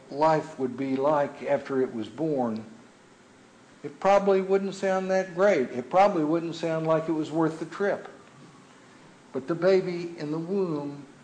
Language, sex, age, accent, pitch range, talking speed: English, male, 60-79, American, 130-165 Hz, 160 wpm